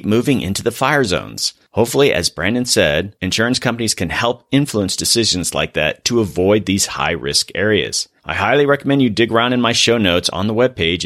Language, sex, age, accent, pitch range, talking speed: English, male, 30-49, American, 95-125 Hz, 190 wpm